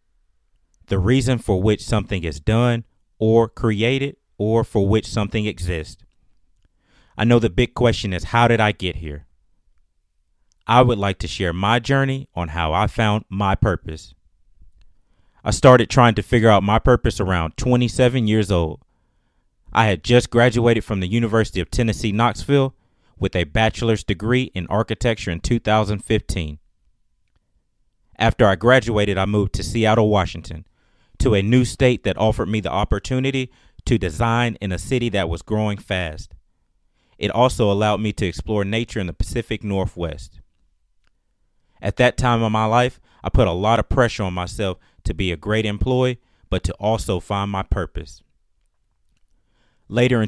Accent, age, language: American, 30-49, English